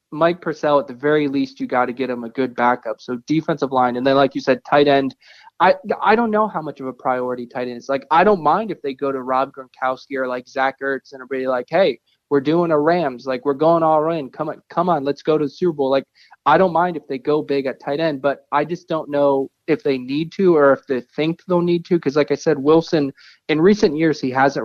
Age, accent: 20-39, American